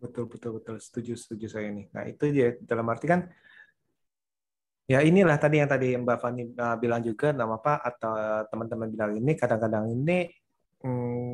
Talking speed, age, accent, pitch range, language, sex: 165 wpm, 20-39, native, 115-155 Hz, Indonesian, male